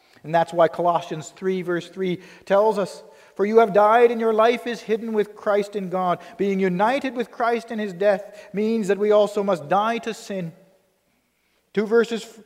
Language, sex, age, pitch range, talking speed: English, male, 40-59, 170-220 Hz, 190 wpm